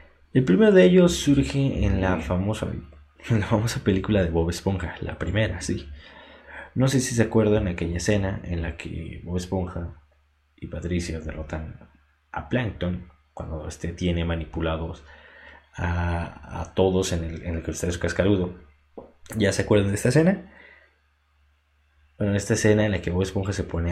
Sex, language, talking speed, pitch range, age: male, Spanish, 165 wpm, 80-100 Hz, 20-39